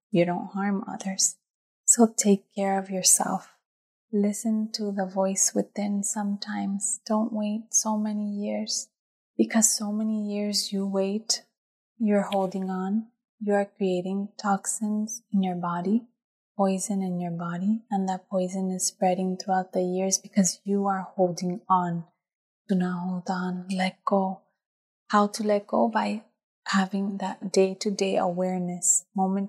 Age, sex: 20-39, female